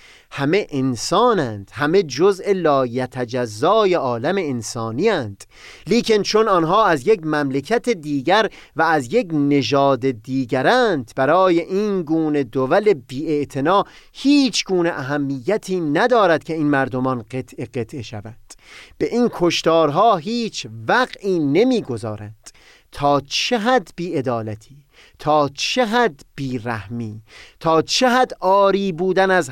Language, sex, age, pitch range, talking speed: Persian, male, 30-49, 135-200 Hz, 110 wpm